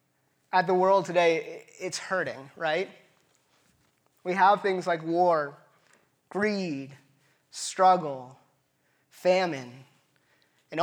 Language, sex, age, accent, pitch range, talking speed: English, male, 20-39, American, 140-175 Hz, 90 wpm